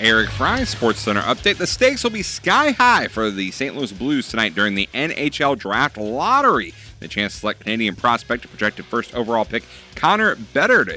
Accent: American